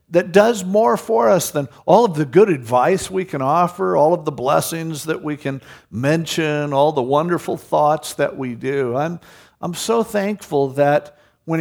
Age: 50-69